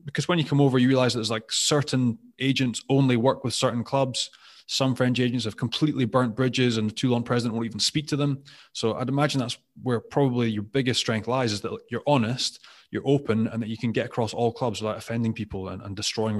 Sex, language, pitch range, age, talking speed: male, English, 110-140 Hz, 20-39, 230 wpm